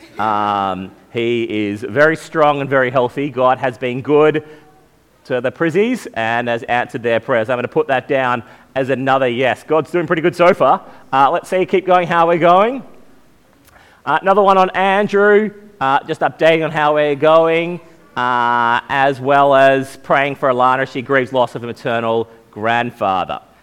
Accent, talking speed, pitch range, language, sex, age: Australian, 180 wpm, 125-155 Hz, English, male, 30-49